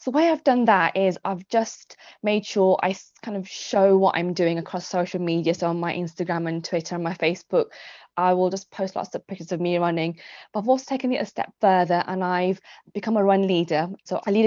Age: 20-39